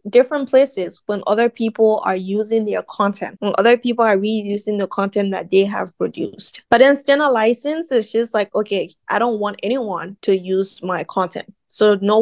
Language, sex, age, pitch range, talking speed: English, female, 10-29, 195-230 Hz, 185 wpm